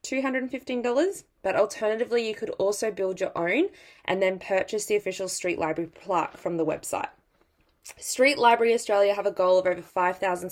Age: 20-39